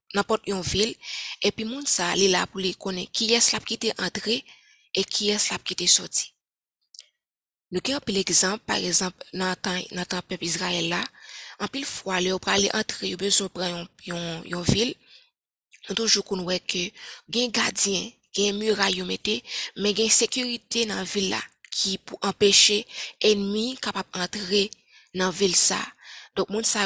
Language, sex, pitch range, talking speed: French, female, 180-215 Hz, 155 wpm